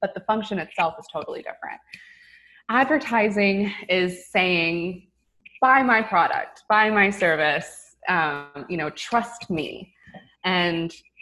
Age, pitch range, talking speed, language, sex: 20-39, 165-200 Hz, 120 wpm, English, female